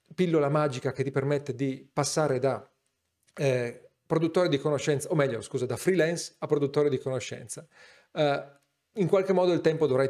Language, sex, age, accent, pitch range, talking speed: Italian, male, 40-59, native, 135-170 Hz, 160 wpm